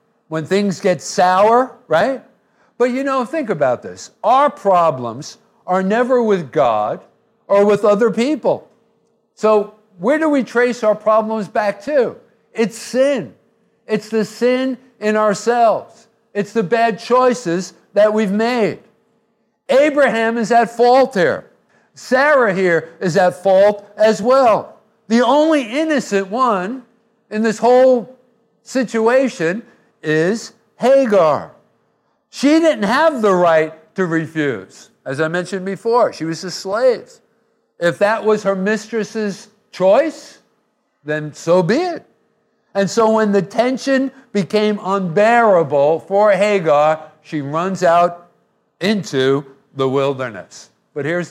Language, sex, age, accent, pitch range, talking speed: English, male, 50-69, American, 170-235 Hz, 125 wpm